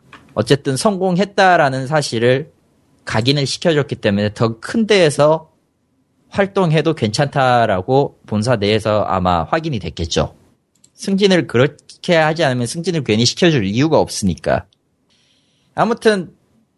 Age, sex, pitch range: 30-49, male, 115-170 Hz